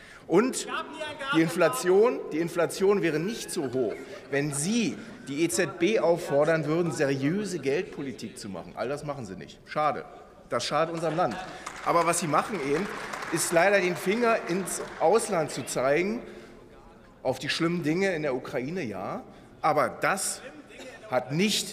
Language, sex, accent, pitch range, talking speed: German, male, German, 150-195 Hz, 145 wpm